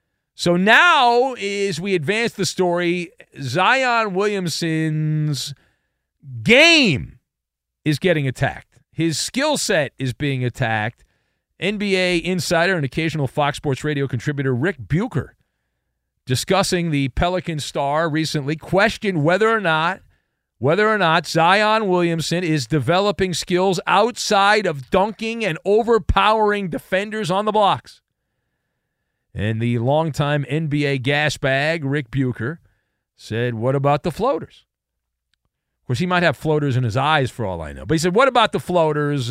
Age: 40-59